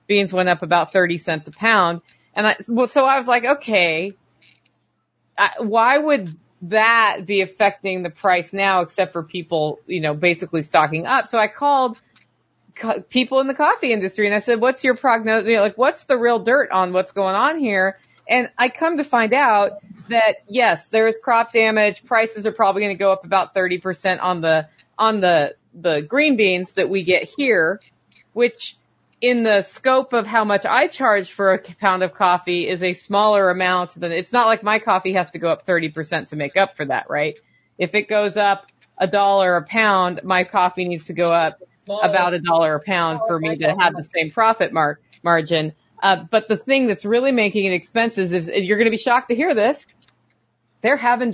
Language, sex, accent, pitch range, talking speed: English, female, American, 180-230 Hz, 205 wpm